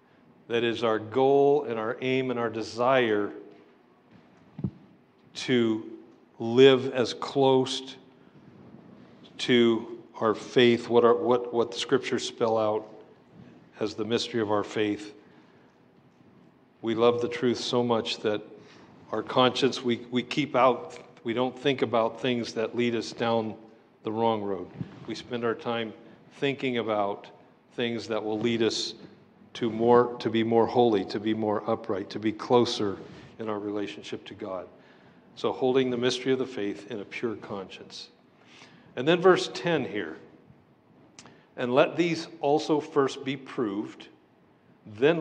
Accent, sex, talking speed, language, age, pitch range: American, male, 145 wpm, English, 50-69, 110-130 Hz